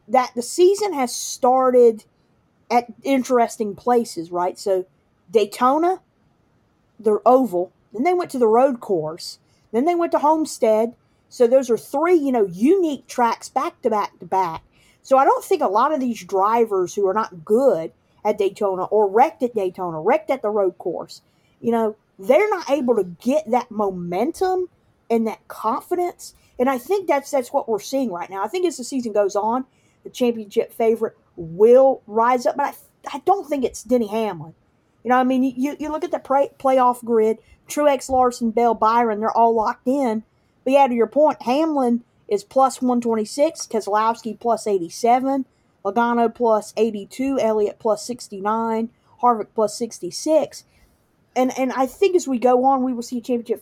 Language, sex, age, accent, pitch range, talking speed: English, female, 40-59, American, 210-270 Hz, 180 wpm